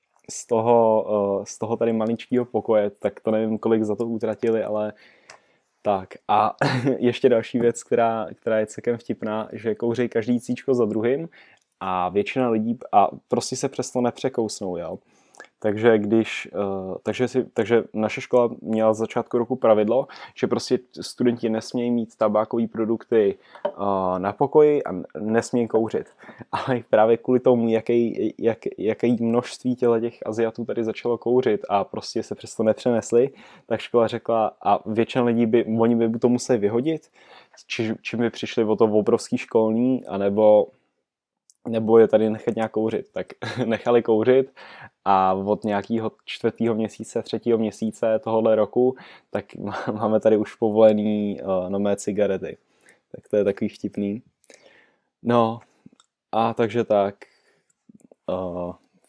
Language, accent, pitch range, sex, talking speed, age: Czech, native, 110-120 Hz, male, 140 wpm, 20-39